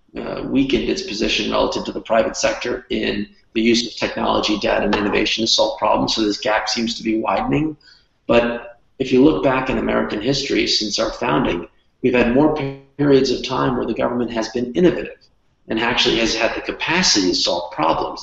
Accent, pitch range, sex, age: American, 110-140 Hz, male, 40-59